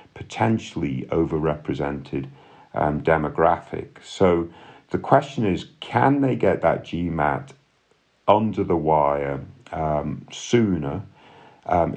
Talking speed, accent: 95 wpm, British